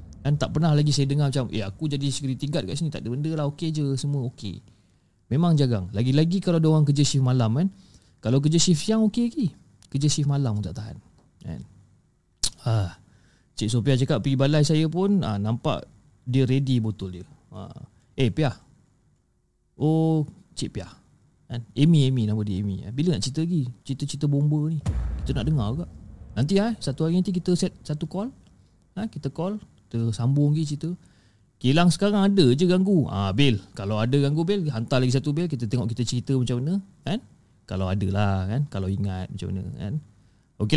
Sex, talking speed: male, 190 wpm